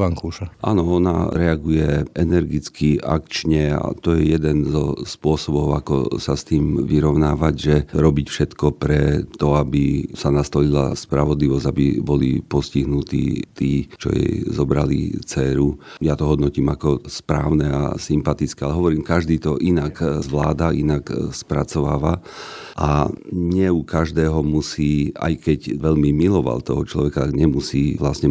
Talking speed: 130 wpm